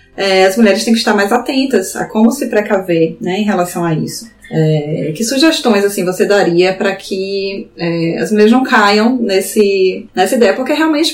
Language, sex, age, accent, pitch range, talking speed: Portuguese, female, 20-39, Brazilian, 180-230 Hz, 190 wpm